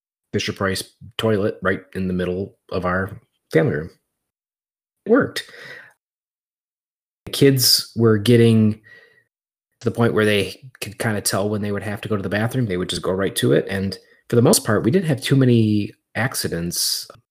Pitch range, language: 95-115 Hz, English